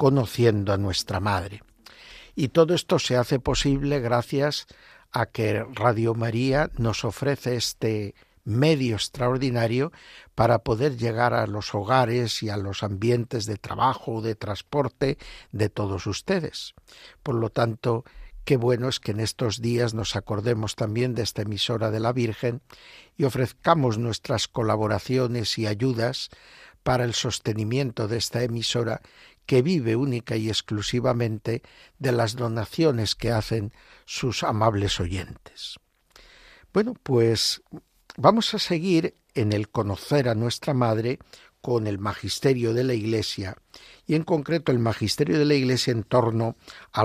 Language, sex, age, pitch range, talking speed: Spanish, male, 60-79, 110-130 Hz, 140 wpm